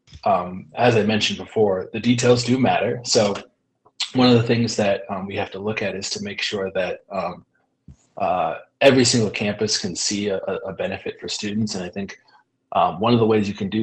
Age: 20-39